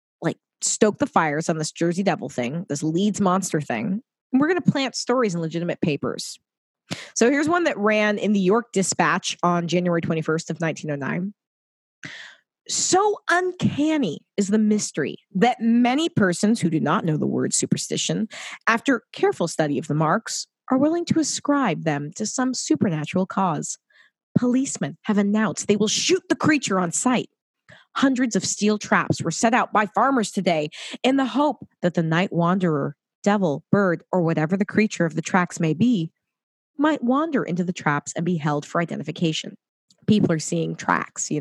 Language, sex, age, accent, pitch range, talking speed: English, female, 20-39, American, 170-235 Hz, 170 wpm